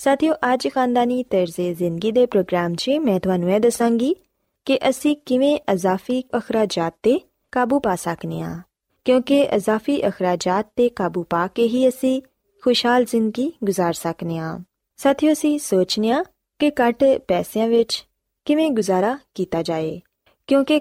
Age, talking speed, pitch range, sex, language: 20-39, 120 wpm, 180-255 Hz, female, Punjabi